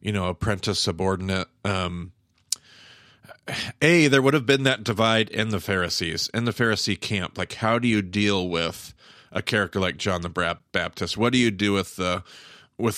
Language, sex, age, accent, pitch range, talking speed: English, male, 40-59, American, 95-130 Hz, 175 wpm